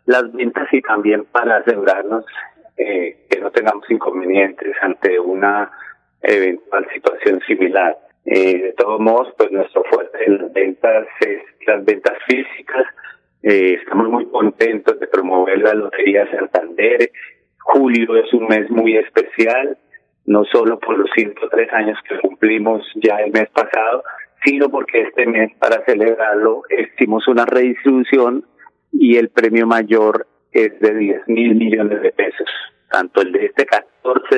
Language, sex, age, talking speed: Spanish, male, 40-59, 145 wpm